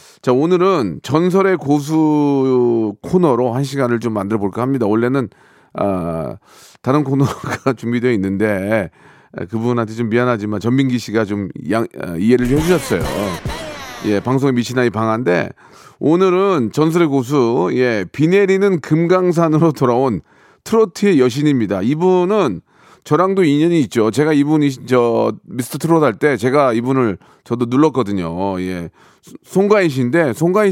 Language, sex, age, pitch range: Korean, male, 40-59, 115-165 Hz